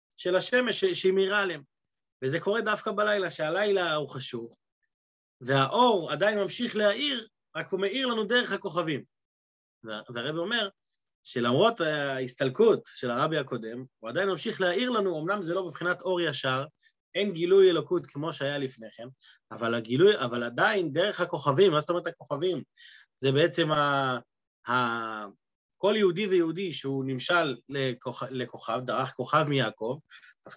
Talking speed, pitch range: 140 wpm, 135-200 Hz